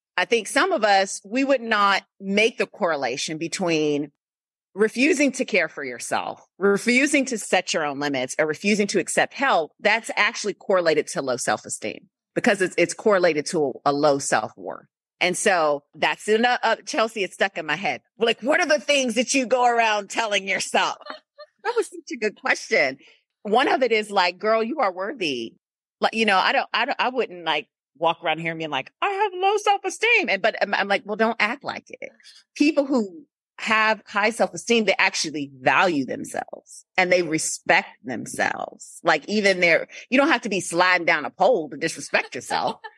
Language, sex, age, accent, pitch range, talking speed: English, female, 30-49, American, 170-265 Hz, 190 wpm